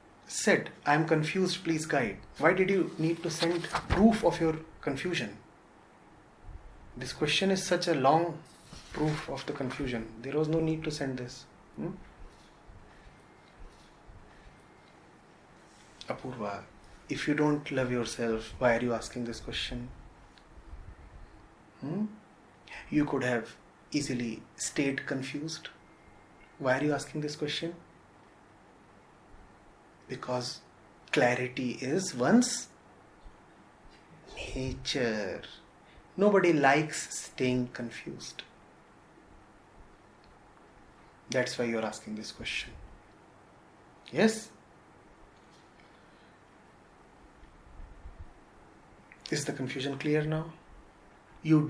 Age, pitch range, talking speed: 30-49, 115-160 Hz, 95 wpm